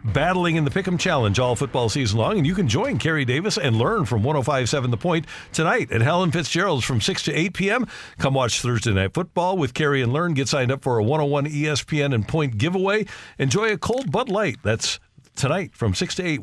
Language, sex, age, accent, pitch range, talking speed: English, male, 50-69, American, 120-160 Hz, 220 wpm